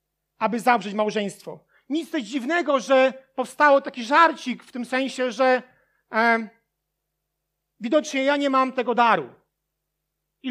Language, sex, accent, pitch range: Polish, male, native, 230-275 Hz